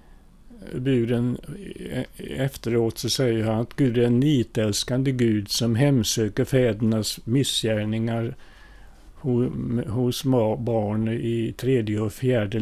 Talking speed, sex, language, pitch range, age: 100 wpm, male, Swedish, 105-135 Hz, 50-69